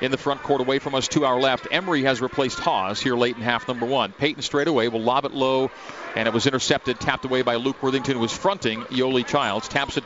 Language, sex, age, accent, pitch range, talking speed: English, male, 40-59, American, 125-150 Hz, 255 wpm